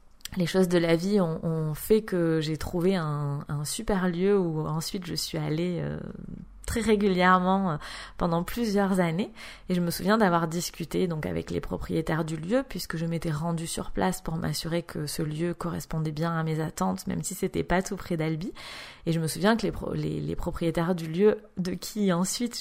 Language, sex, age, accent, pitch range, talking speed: French, female, 20-39, French, 165-200 Hz, 200 wpm